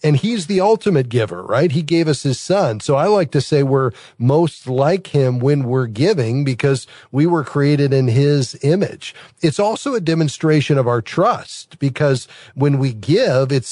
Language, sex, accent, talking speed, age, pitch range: English, male, American, 185 wpm, 40-59, 125-160 Hz